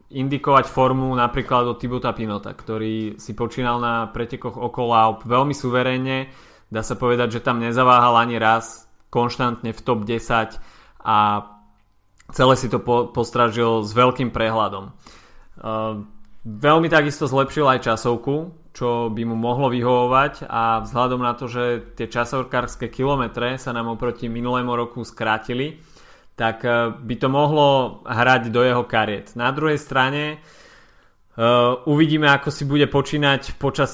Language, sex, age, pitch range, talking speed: Slovak, male, 20-39, 115-130 Hz, 135 wpm